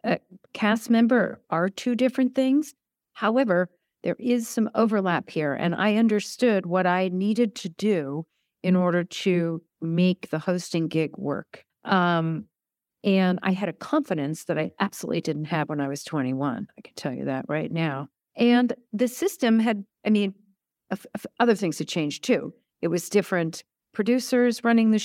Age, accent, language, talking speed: 50-69, American, English, 165 wpm